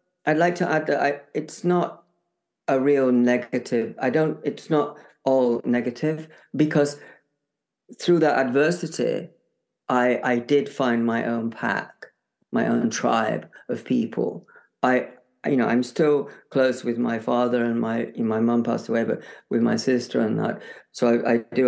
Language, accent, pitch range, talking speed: English, British, 115-145 Hz, 160 wpm